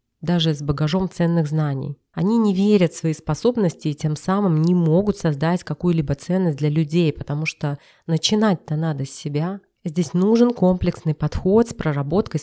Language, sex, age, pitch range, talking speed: Russian, female, 30-49, 155-185 Hz, 160 wpm